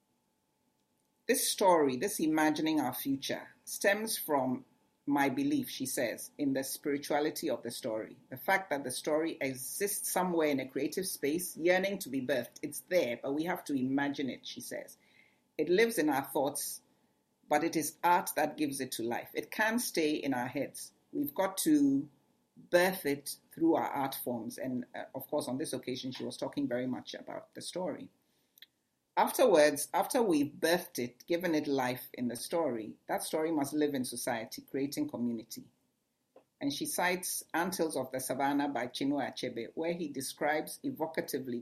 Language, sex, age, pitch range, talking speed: English, female, 60-79, 140-195 Hz, 175 wpm